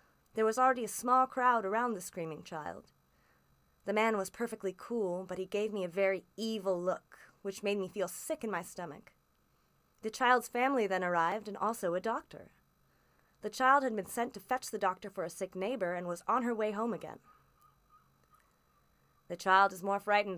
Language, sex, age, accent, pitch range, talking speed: English, female, 20-39, American, 180-240 Hz, 190 wpm